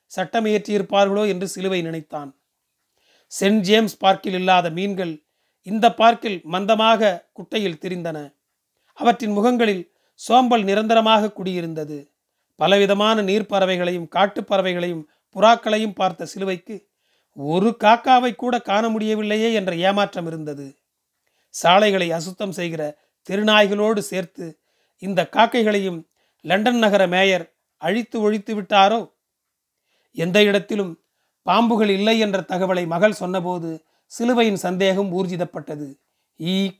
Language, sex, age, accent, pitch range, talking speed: Tamil, male, 40-59, native, 180-215 Hz, 100 wpm